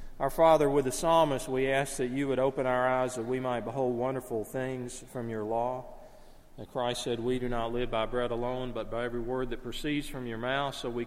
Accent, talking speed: American, 235 wpm